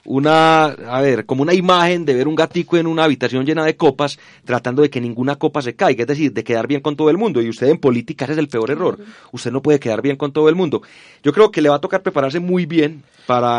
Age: 30-49